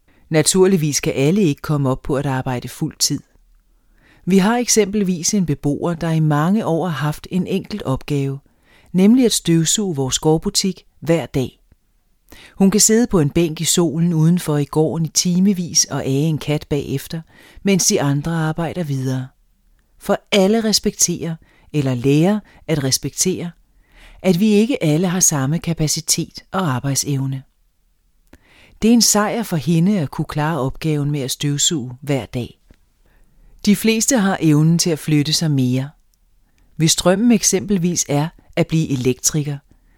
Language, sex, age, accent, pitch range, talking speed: Danish, female, 40-59, native, 140-185 Hz, 155 wpm